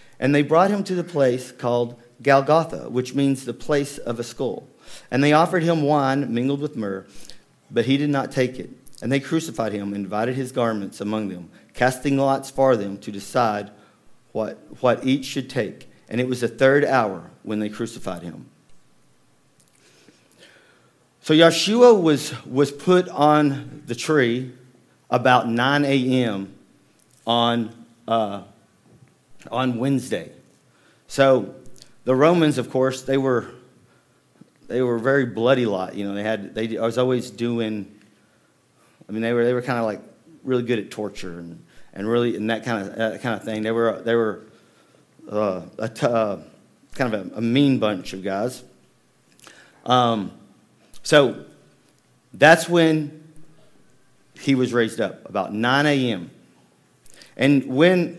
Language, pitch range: English, 110-140 Hz